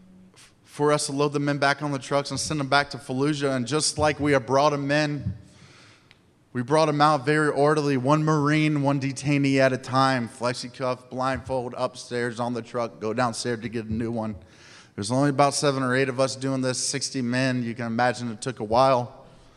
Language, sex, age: English, male, 30-49